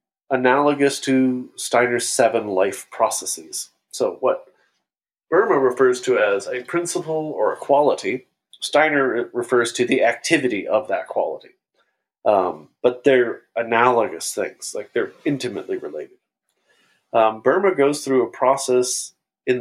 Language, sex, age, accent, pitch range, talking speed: English, male, 30-49, American, 120-195 Hz, 125 wpm